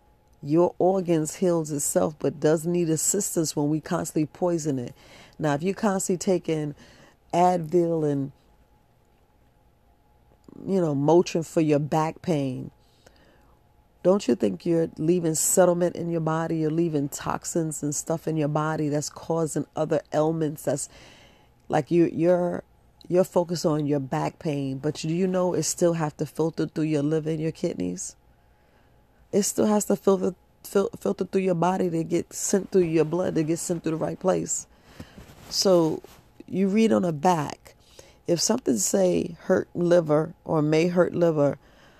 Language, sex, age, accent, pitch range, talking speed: English, female, 40-59, American, 150-180 Hz, 155 wpm